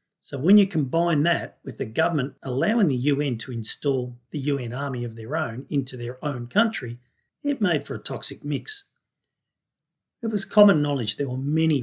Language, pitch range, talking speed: English, 115-145 Hz, 185 wpm